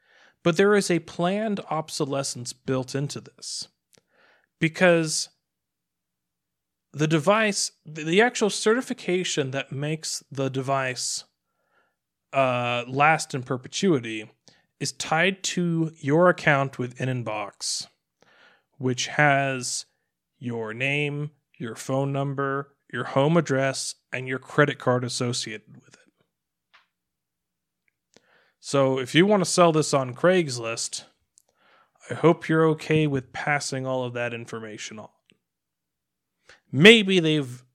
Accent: American